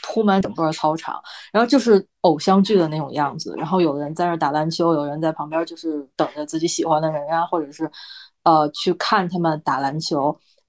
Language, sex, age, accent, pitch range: Chinese, female, 20-39, native, 160-190 Hz